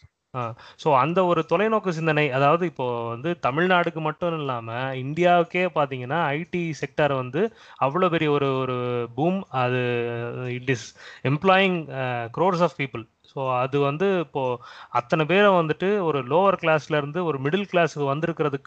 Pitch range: 125-160 Hz